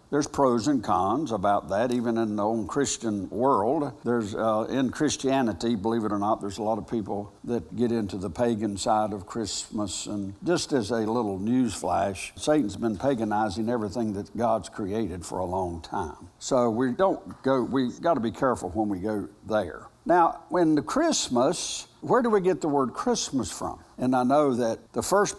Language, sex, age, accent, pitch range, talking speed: English, male, 60-79, American, 110-150 Hz, 195 wpm